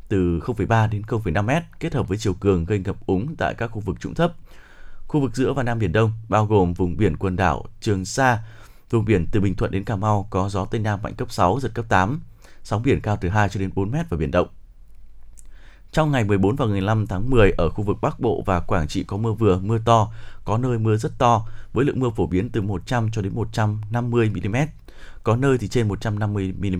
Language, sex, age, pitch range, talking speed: Vietnamese, male, 20-39, 100-120 Hz, 235 wpm